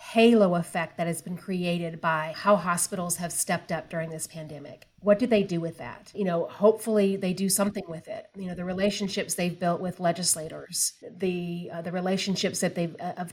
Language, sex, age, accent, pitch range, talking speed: English, female, 40-59, American, 175-215 Hz, 205 wpm